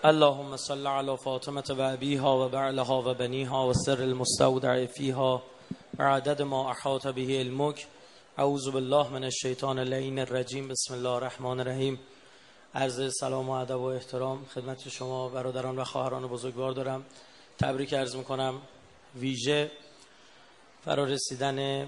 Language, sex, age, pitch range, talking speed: Persian, male, 30-49, 130-140 Hz, 130 wpm